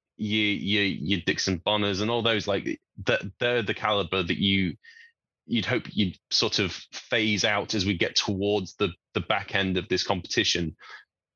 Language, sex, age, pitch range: English, male, 20-39, 90-110 Hz